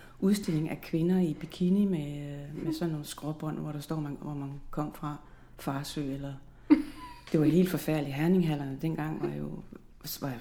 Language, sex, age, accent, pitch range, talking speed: Danish, female, 40-59, native, 155-185 Hz, 165 wpm